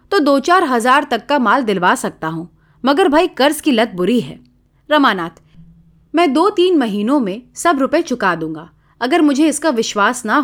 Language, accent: Hindi, native